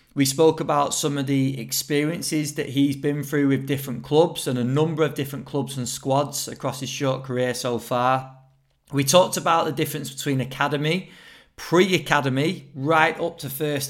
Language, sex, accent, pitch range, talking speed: English, male, British, 130-150 Hz, 175 wpm